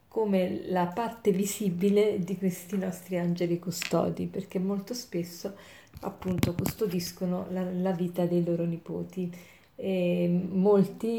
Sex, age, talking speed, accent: female, 40-59, 120 wpm, native